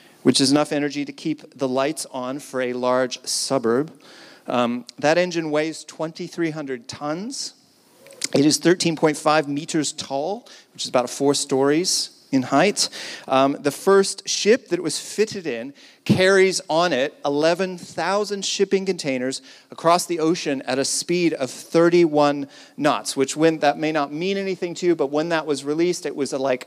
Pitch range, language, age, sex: 135-170 Hz, English, 40-59, male